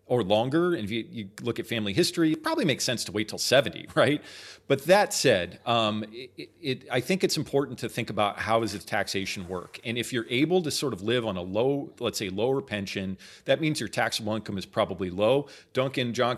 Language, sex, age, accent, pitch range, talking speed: English, male, 40-59, American, 105-135 Hz, 225 wpm